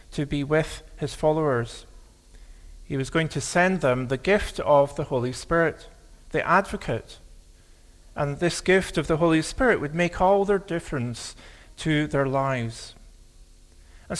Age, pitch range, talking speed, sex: 50-69, 115-170 Hz, 145 wpm, male